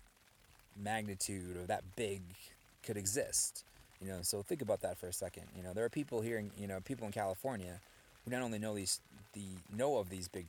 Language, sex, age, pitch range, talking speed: English, male, 20-39, 90-105 Hz, 205 wpm